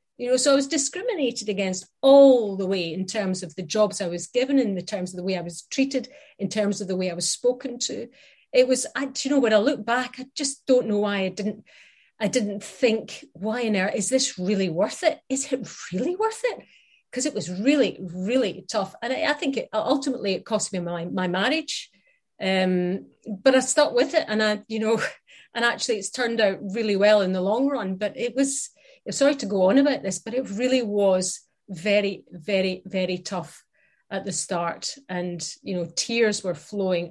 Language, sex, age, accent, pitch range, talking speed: English, female, 30-49, British, 185-255 Hz, 215 wpm